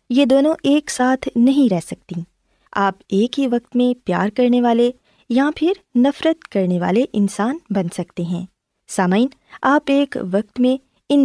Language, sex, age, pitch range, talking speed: Urdu, female, 20-39, 195-275 Hz, 160 wpm